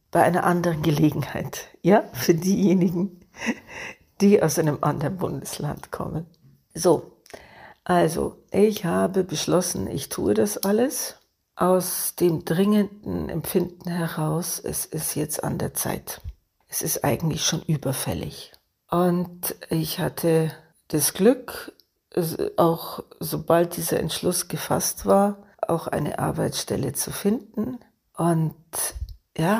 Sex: female